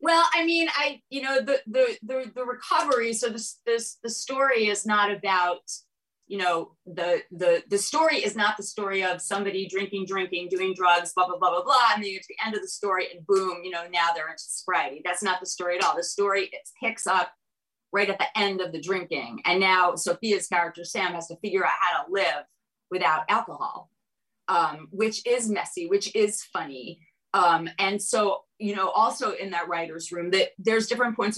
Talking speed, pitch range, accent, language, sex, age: 210 wpm, 180-220 Hz, American, English, female, 30-49